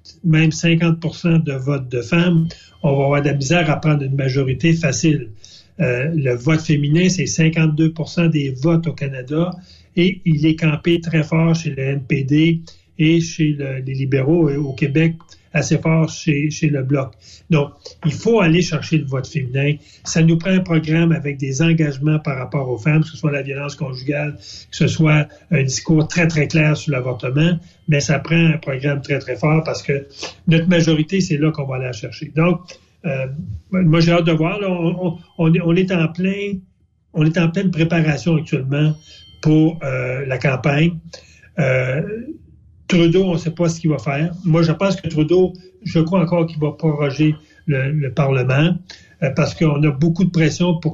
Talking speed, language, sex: 185 wpm, French, male